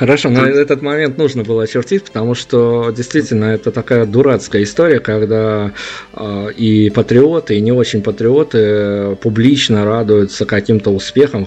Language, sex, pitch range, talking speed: Russian, male, 105-120 Hz, 135 wpm